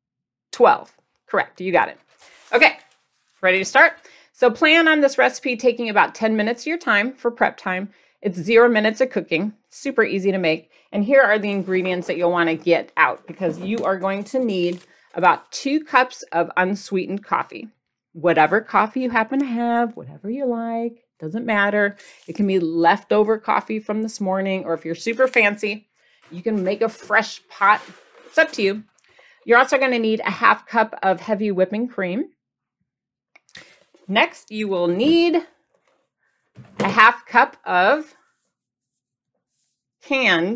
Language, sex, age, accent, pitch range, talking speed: English, female, 40-59, American, 185-240 Hz, 165 wpm